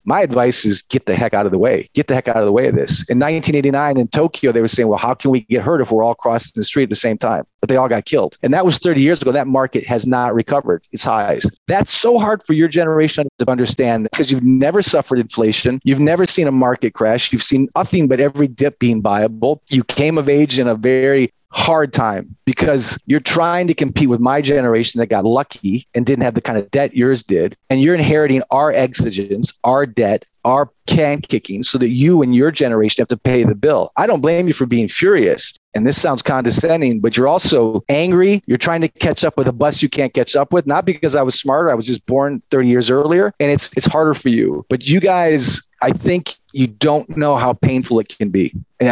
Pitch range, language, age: 120-150 Hz, English, 40-59